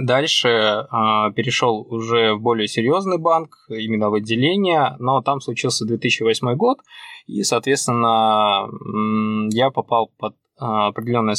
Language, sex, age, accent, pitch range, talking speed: Russian, male, 20-39, native, 110-130 Hz, 110 wpm